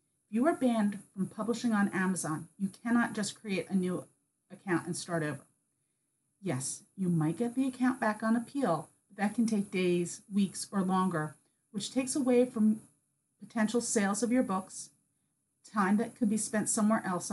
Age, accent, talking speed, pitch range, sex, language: 40-59, American, 175 wpm, 175-230 Hz, female, English